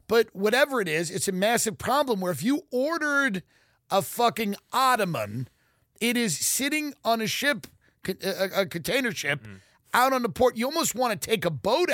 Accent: American